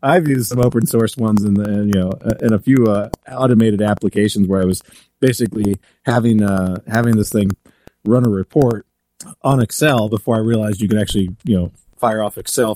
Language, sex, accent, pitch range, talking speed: English, male, American, 100-120 Hz, 190 wpm